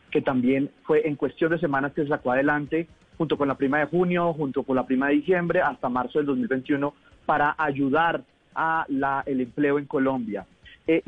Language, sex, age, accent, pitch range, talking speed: Spanish, male, 30-49, Colombian, 140-175 Hz, 195 wpm